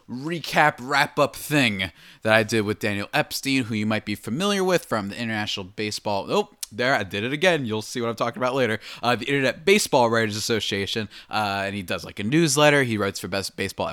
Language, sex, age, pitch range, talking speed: English, male, 20-39, 100-135 Hz, 215 wpm